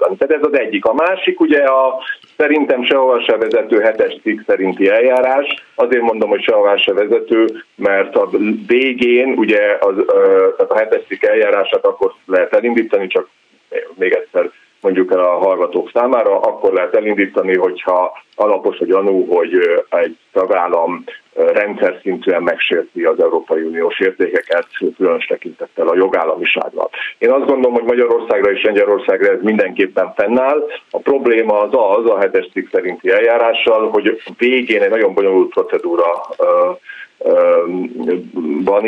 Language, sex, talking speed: Hungarian, male, 140 wpm